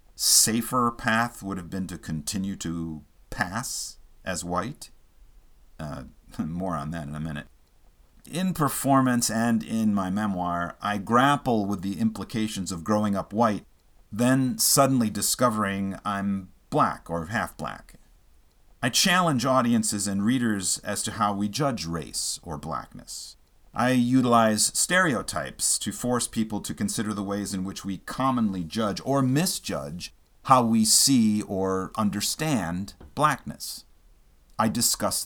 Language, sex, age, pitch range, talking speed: English, male, 50-69, 90-115 Hz, 135 wpm